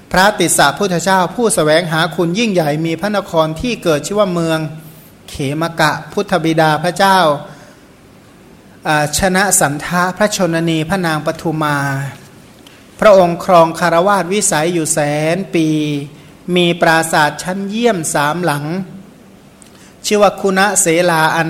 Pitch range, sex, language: 155-185 Hz, male, Thai